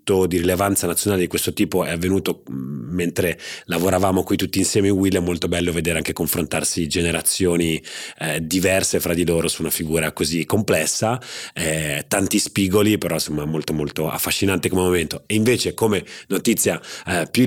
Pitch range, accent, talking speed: 90-110 Hz, native, 165 wpm